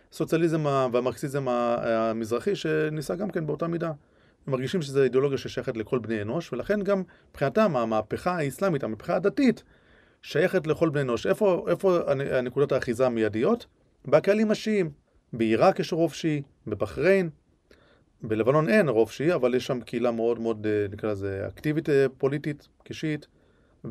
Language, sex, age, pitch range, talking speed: Hebrew, male, 30-49, 115-170 Hz, 135 wpm